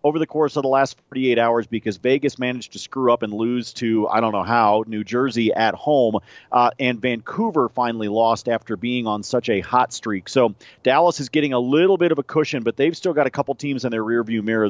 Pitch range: 115-150 Hz